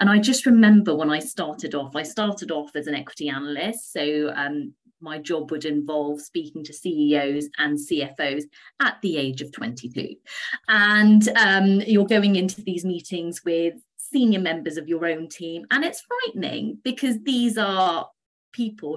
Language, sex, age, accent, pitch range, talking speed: English, female, 30-49, British, 145-205 Hz, 165 wpm